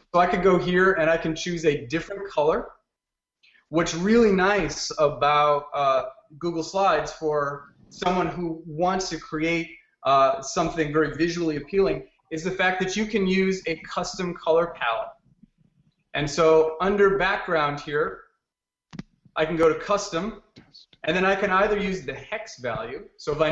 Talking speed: 160 wpm